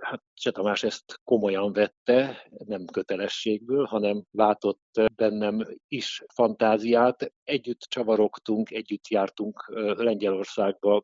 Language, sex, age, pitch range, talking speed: Hungarian, male, 60-79, 105-115 Hz, 90 wpm